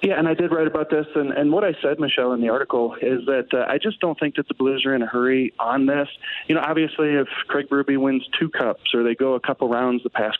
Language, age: English, 40-59